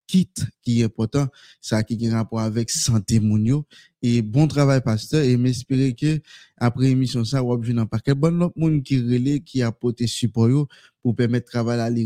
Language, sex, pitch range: French, male, 115-140 Hz